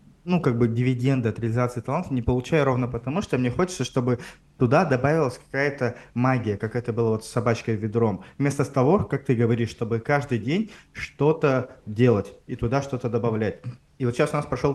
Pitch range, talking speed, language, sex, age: 120-145 Hz, 185 wpm, Russian, male, 20-39